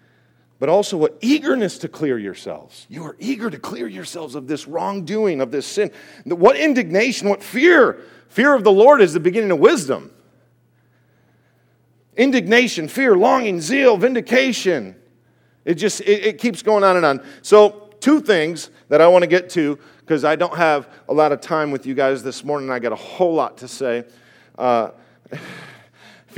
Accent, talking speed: American, 175 wpm